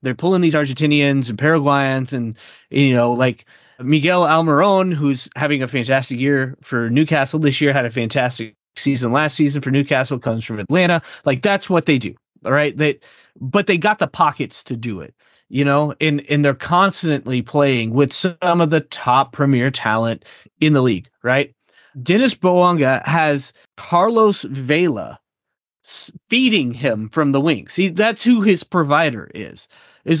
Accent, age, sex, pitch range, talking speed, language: American, 30-49, male, 140-185 Hz, 165 wpm, English